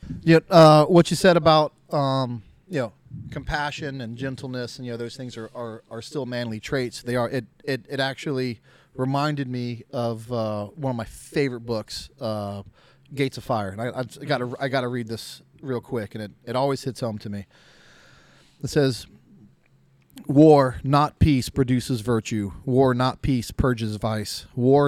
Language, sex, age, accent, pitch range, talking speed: English, male, 30-49, American, 110-135 Hz, 180 wpm